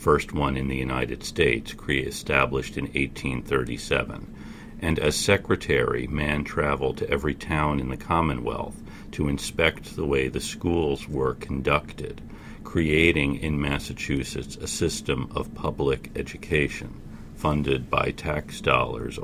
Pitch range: 70-80 Hz